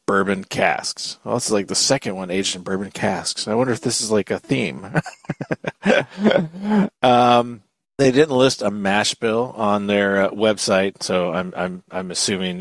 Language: English